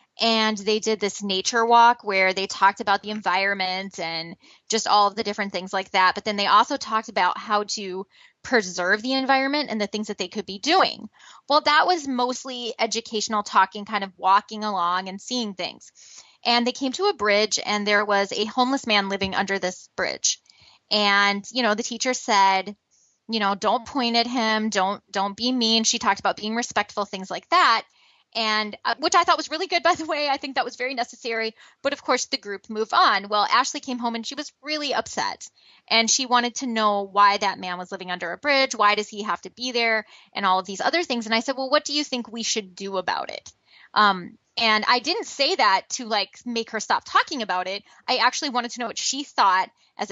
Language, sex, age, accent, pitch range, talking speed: English, female, 20-39, American, 200-250 Hz, 225 wpm